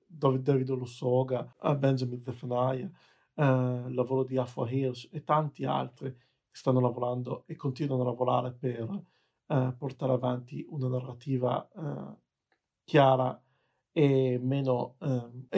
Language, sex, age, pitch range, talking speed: Italian, male, 50-69, 125-140 Hz, 120 wpm